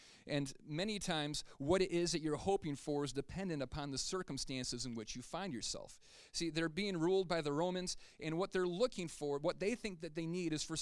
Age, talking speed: 30-49, 220 wpm